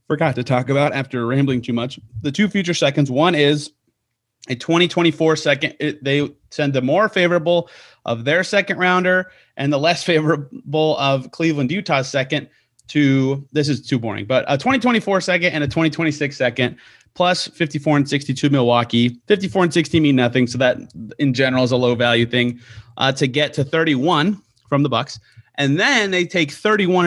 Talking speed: 185 wpm